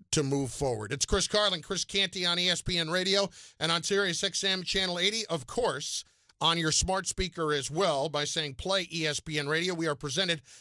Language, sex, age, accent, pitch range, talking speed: English, male, 50-69, American, 155-205 Hz, 185 wpm